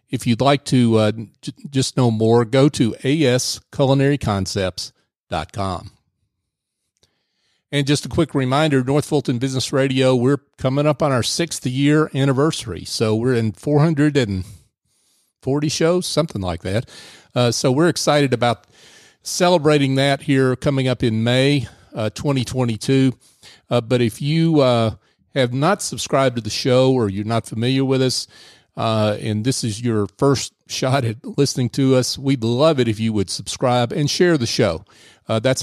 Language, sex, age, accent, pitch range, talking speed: English, male, 40-59, American, 110-140 Hz, 155 wpm